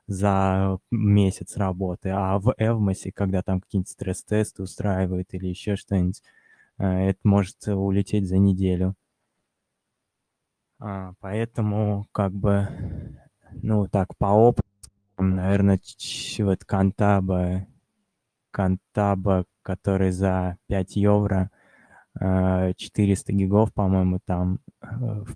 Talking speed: 90 wpm